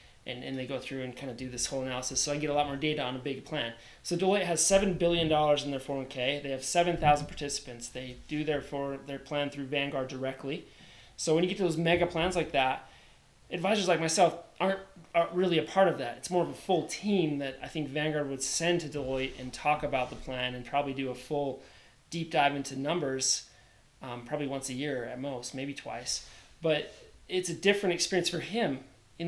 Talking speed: 225 wpm